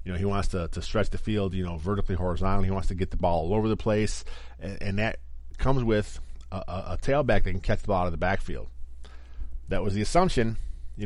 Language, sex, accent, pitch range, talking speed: English, male, American, 85-110 Hz, 250 wpm